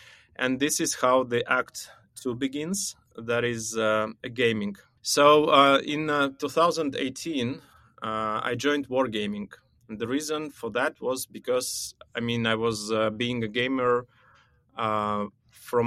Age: 20-39